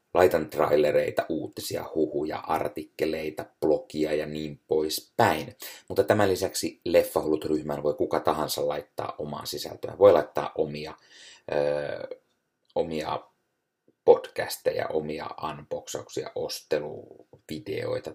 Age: 30-49